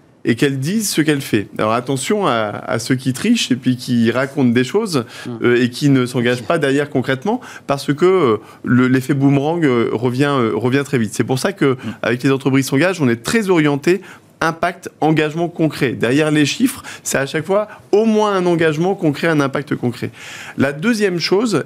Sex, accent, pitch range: male, French, 130-165 Hz